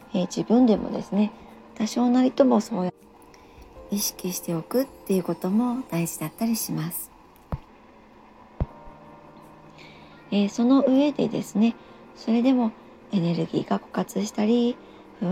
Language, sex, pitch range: Japanese, male, 180-225 Hz